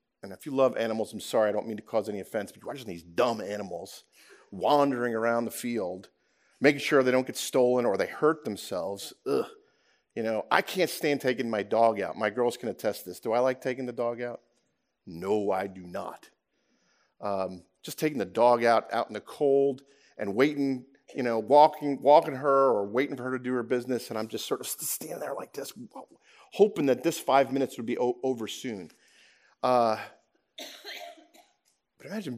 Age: 40-59